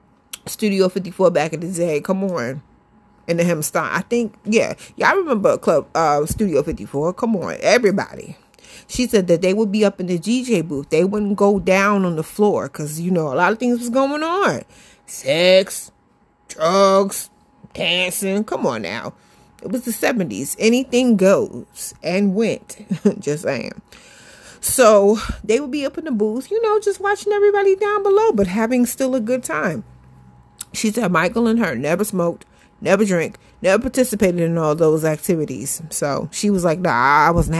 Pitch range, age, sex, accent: 180-230 Hz, 30-49, female, American